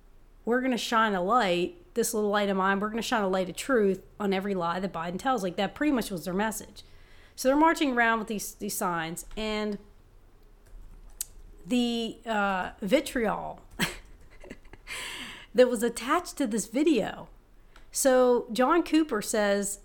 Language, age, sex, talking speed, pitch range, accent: English, 40-59, female, 165 wpm, 180-250 Hz, American